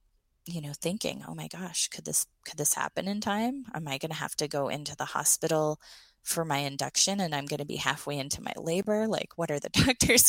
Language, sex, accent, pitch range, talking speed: English, female, American, 150-180 Hz, 235 wpm